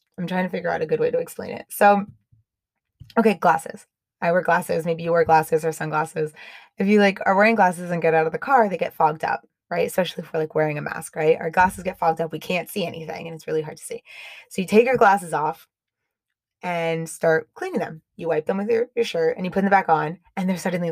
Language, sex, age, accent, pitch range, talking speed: English, female, 20-39, American, 165-215 Hz, 255 wpm